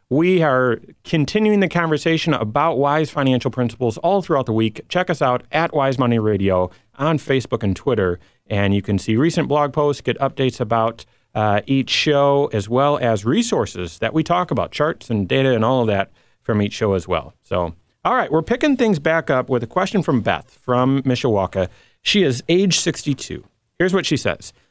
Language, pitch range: English, 105-145 Hz